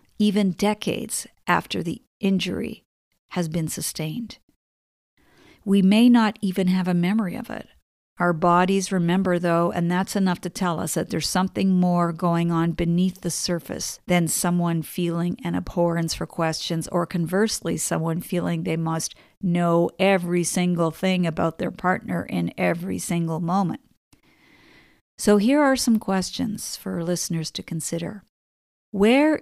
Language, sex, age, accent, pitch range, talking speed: English, female, 50-69, American, 170-195 Hz, 145 wpm